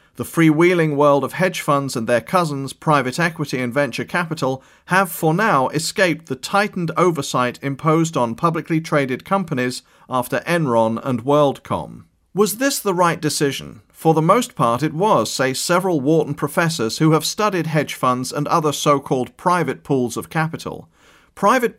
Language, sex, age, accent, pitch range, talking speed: English, male, 40-59, British, 130-170 Hz, 160 wpm